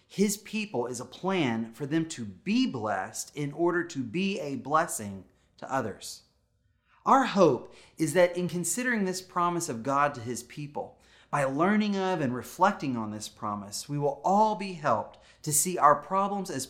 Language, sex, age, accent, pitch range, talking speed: English, male, 30-49, American, 120-175 Hz, 175 wpm